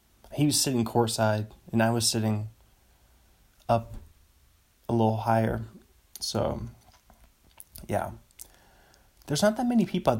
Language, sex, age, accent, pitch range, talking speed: English, male, 20-39, American, 115-180 Hz, 120 wpm